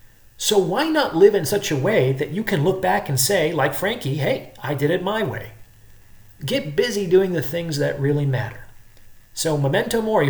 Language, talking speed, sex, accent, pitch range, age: English, 200 wpm, male, American, 110-160 Hz, 40-59